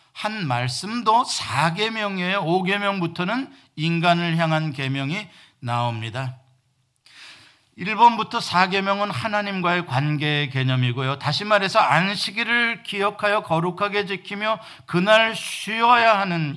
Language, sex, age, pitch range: Korean, male, 50-69, 155-225 Hz